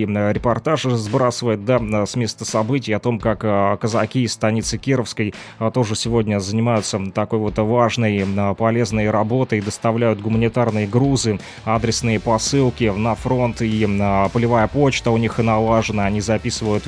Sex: male